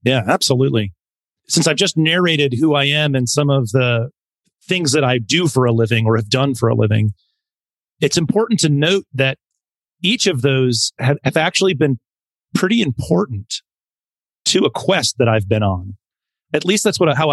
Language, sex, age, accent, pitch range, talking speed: English, male, 40-59, American, 120-155 Hz, 180 wpm